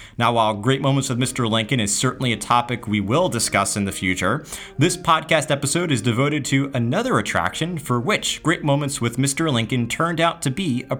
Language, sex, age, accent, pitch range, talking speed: English, male, 30-49, American, 115-155 Hz, 200 wpm